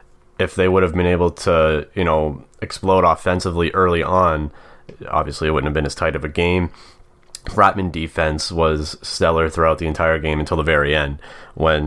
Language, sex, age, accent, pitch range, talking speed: English, male, 30-49, American, 75-85 Hz, 180 wpm